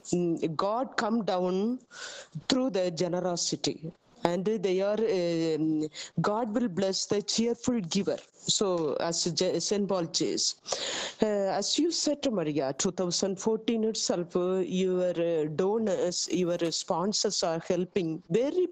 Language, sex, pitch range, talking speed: Slovak, female, 175-235 Hz, 115 wpm